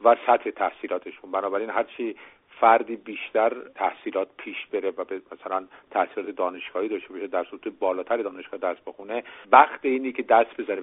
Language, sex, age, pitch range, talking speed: Persian, male, 50-69, 100-160 Hz, 150 wpm